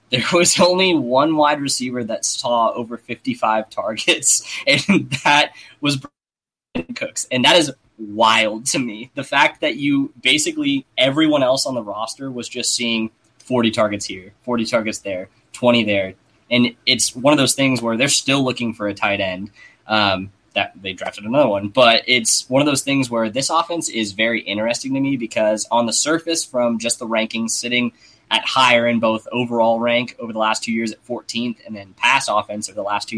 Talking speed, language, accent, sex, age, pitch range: 195 wpm, English, American, male, 10-29, 110-135 Hz